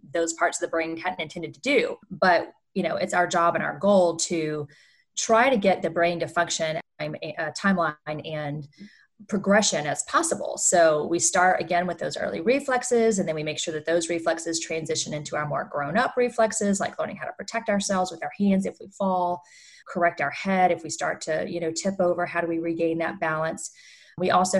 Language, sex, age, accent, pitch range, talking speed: English, female, 30-49, American, 160-195 Hz, 210 wpm